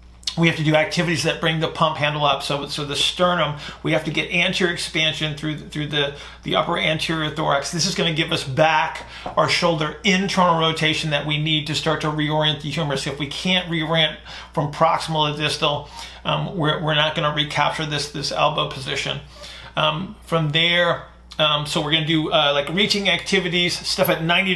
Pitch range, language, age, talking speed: 150-165 Hz, English, 40-59, 205 wpm